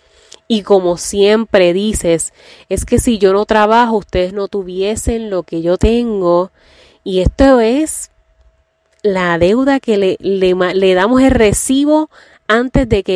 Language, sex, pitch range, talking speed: Spanish, female, 165-230 Hz, 140 wpm